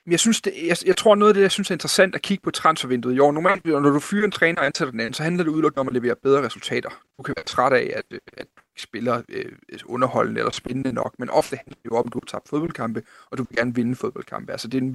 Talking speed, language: 295 wpm, Danish